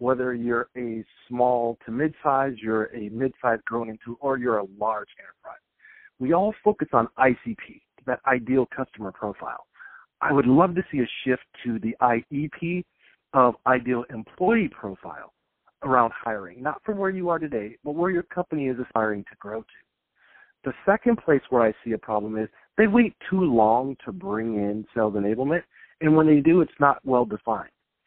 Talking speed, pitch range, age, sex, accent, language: 175 wpm, 115-155 Hz, 50-69, male, American, English